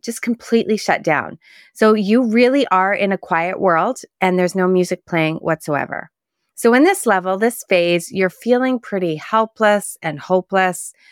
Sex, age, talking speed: female, 30-49, 160 wpm